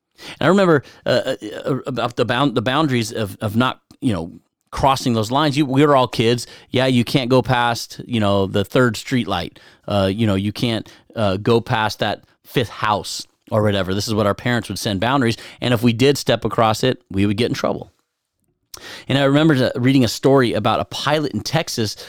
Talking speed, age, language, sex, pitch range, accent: 210 wpm, 30-49, English, male, 115-145 Hz, American